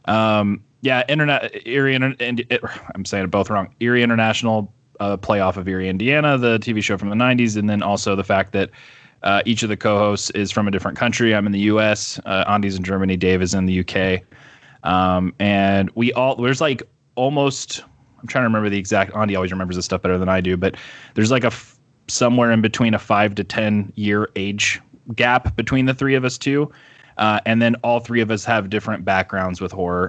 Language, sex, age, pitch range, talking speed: English, male, 20-39, 100-120 Hz, 215 wpm